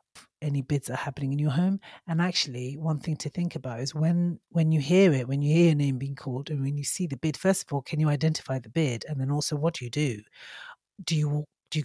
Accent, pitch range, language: British, 140-170 Hz, English